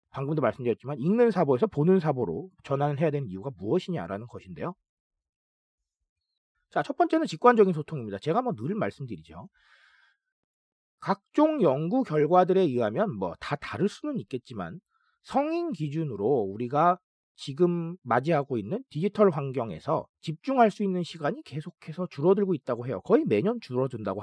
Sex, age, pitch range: male, 40-59, 140-215 Hz